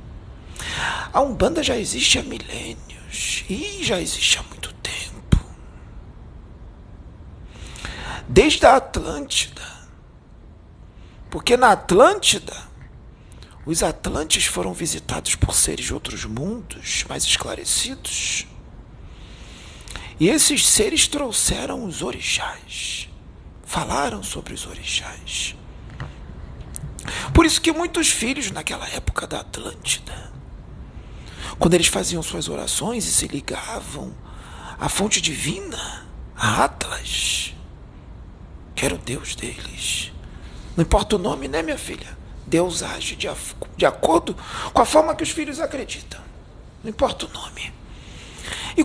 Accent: Brazilian